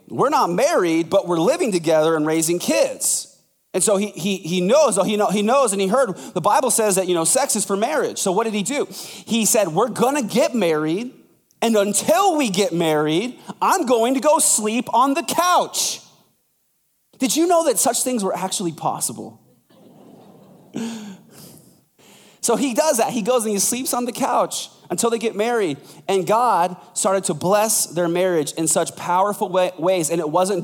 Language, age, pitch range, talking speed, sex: English, 30-49, 175-235 Hz, 195 wpm, male